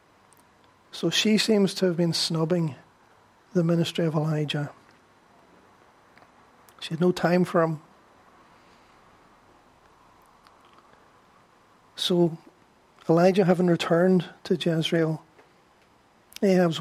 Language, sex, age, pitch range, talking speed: English, male, 40-59, 165-185 Hz, 85 wpm